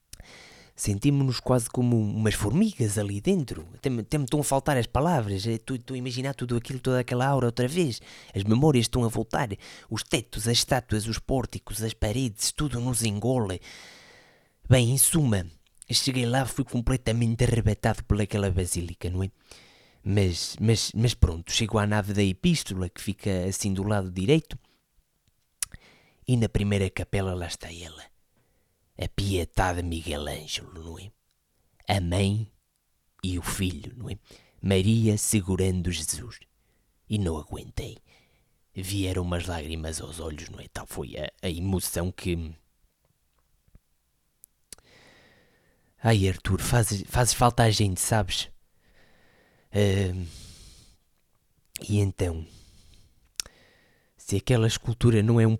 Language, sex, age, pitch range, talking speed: Portuguese, male, 20-39, 90-120 Hz, 135 wpm